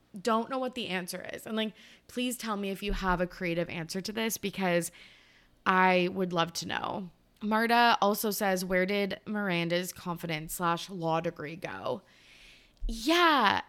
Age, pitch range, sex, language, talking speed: 20-39, 170-220 Hz, female, English, 160 wpm